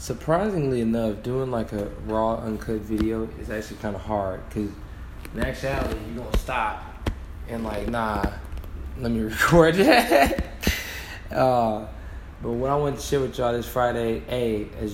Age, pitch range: 20-39, 90-115 Hz